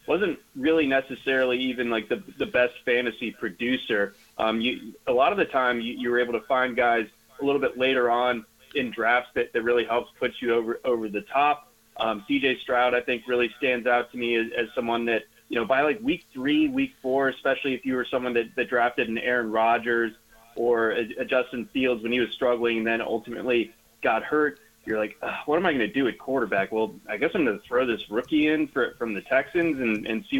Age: 20-39